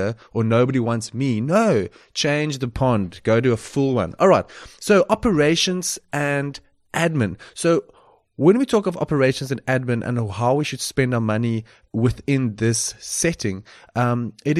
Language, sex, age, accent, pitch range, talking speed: English, male, 30-49, South African, 120-165 Hz, 160 wpm